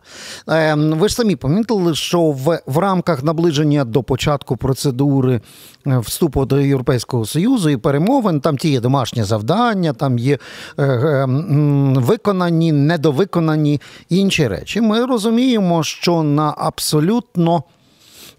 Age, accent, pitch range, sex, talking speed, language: 50-69, native, 135-175 Hz, male, 110 wpm, Ukrainian